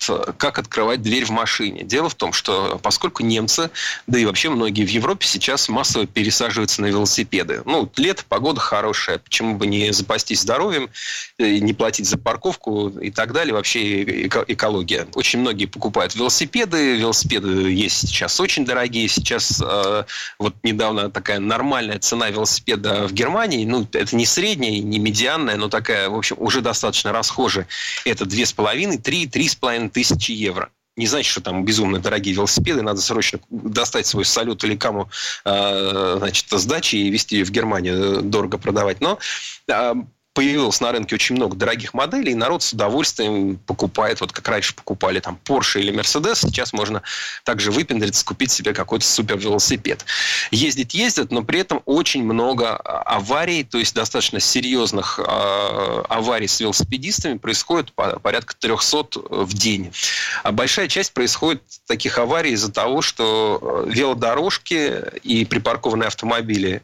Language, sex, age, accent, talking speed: Russian, male, 30-49, native, 150 wpm